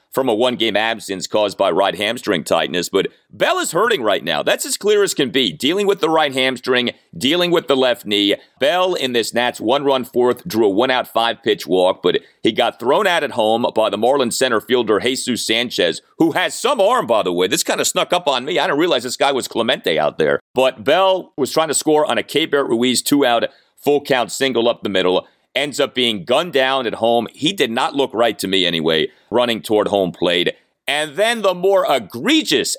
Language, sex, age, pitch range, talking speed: English, male, 40-59, 115-160 Hz, 230 wpm